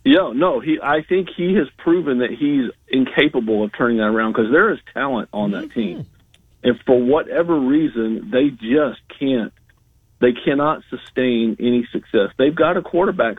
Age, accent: 50-69, American